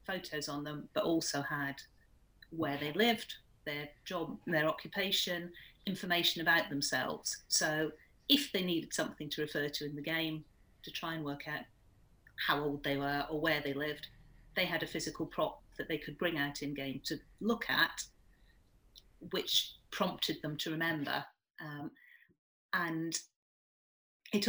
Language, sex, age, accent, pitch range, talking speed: English, female, 40-59, British, 160-235 Hz, 155 wpm